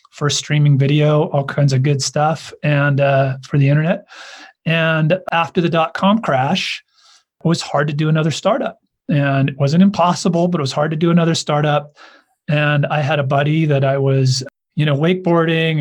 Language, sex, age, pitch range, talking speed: English, male, 30-49, 135-160 Hz, 180 wpm